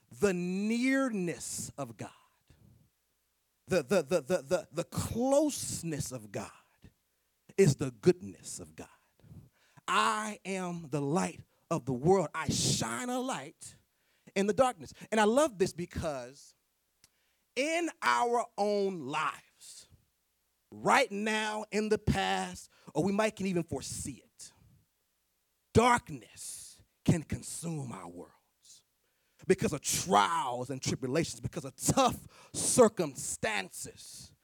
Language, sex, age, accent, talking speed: English, male, 30-49, American, 110 wpm